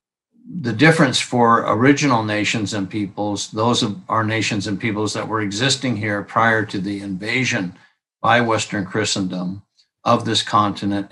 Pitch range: 100-115 Hz